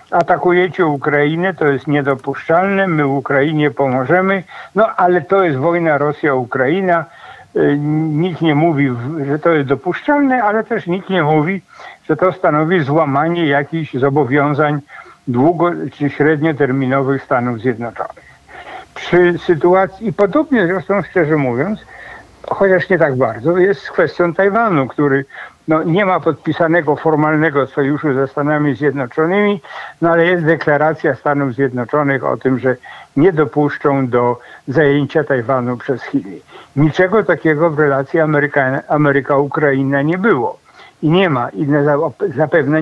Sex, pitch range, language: male, 140-175 Hz, Polish